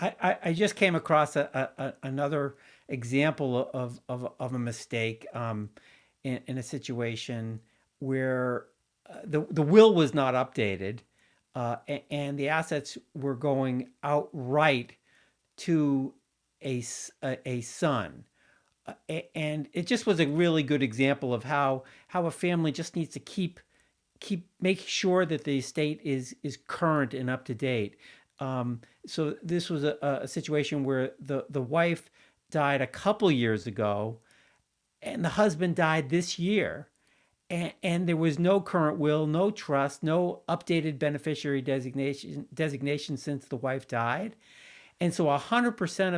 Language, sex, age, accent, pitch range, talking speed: English, male, 50-69, American, 130-165 Hz, 145 wpm